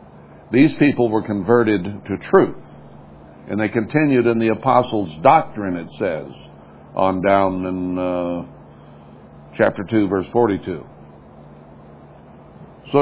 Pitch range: 75-115 Hz